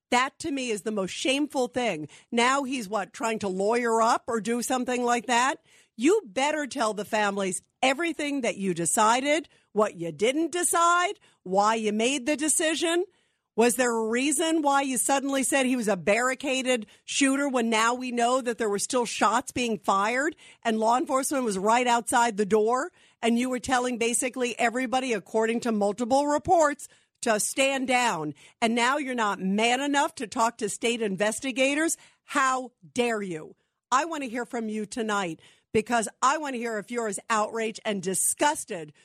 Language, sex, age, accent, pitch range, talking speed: English, female, 50-69, American, 215-265 Hz, 175 wpm